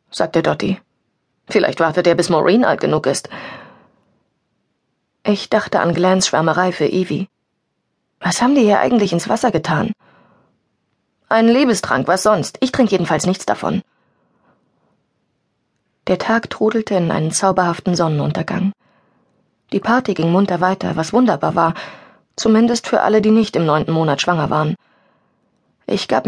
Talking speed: 140 wpm